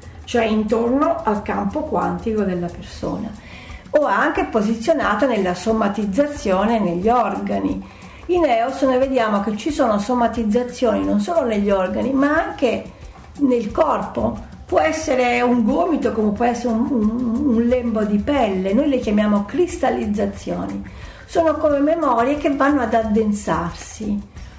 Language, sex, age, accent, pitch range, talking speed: Italian, female, 50-69, native, 200-260 Hz, 130 wpm